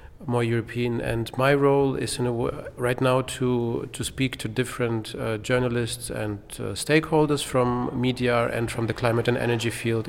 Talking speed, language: 170 wpm, French